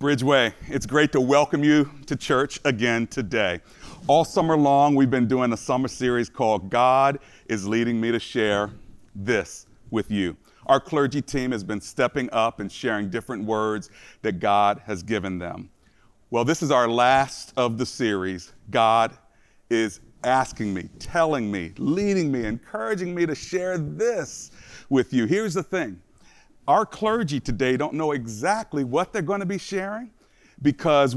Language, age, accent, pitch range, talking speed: English, 40-59, American, 120-180 Hz, 160 wpm